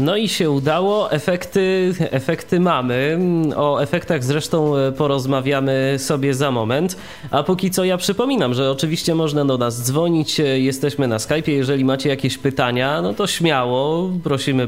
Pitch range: 125-160 Hz